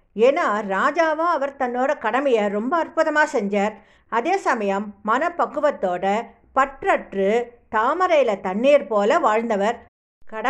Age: 60-79